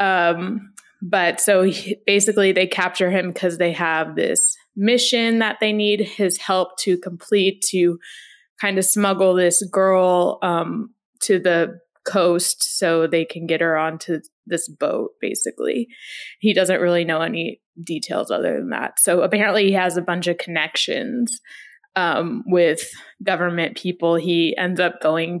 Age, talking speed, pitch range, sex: 20-39, 150 wpm, 170-200 Hz, female